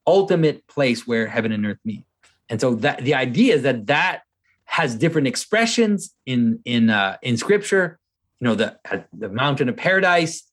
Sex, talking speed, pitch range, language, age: male, 155 wpm, 120-175 Hz, English, 30-49